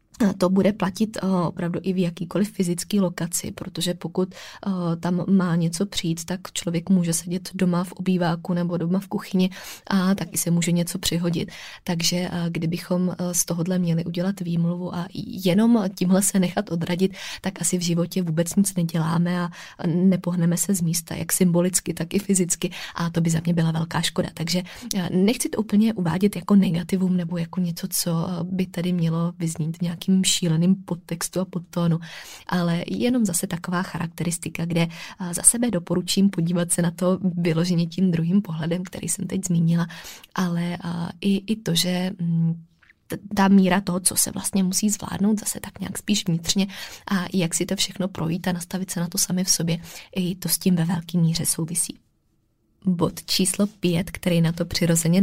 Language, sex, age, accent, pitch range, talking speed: Czech, female, 20-39, native, 170-190 Hz, 170 wpm